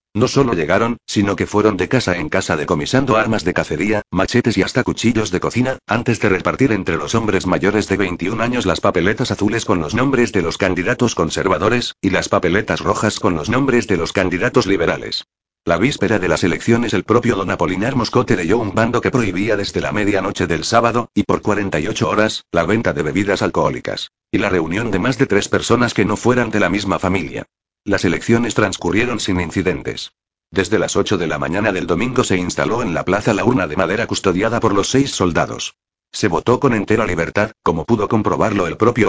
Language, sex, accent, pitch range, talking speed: Spanish, male, Spanish, 95-120 Hz, 205 wpm